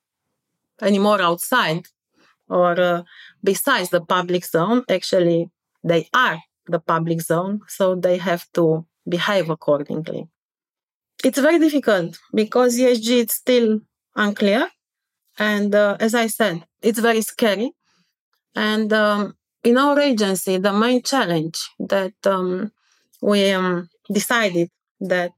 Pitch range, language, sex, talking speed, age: 185-245 Hz, English, female, 120 wpm, 30-49